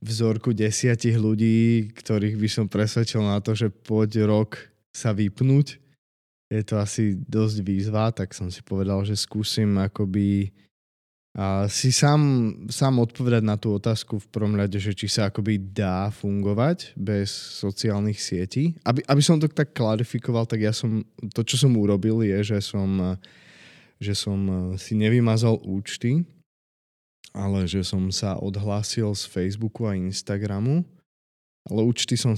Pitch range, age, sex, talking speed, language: 95-110 Hz, 20-39, male, 145 wpm, Slovak